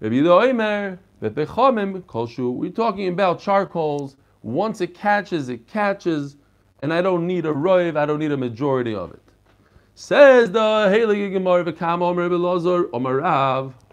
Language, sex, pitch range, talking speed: English, male, 125-195 Hz, 115 wpm